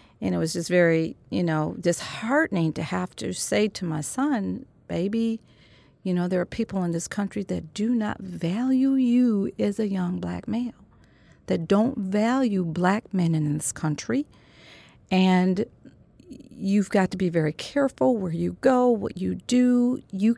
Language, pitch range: English, 155-215 Hz